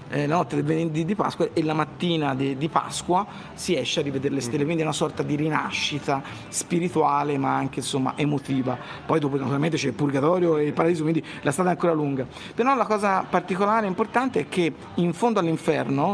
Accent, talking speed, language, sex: native, 195 wpm, Italian, male